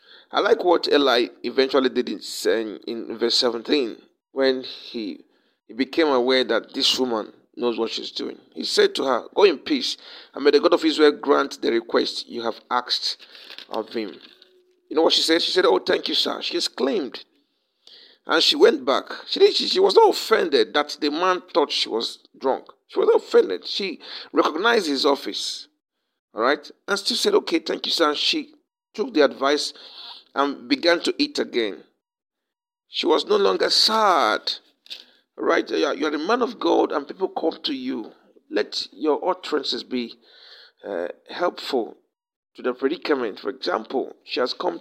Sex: male